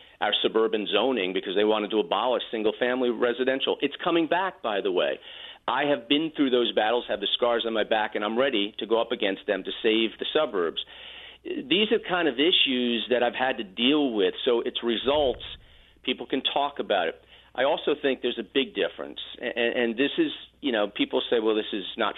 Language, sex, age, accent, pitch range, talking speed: English, male, 40-59, American, 115-170 Hz, 210 wpm